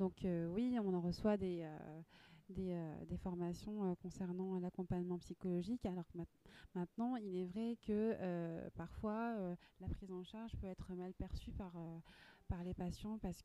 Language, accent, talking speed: French, French, 185 wpm